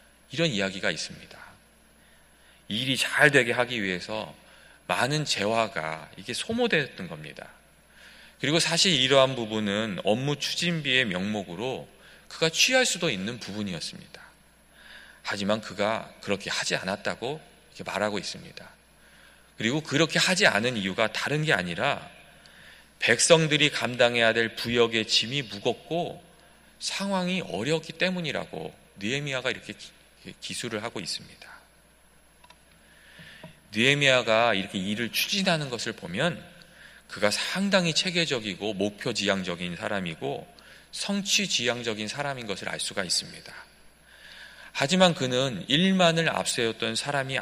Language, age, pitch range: Korean, 40-59, 105-160 Hz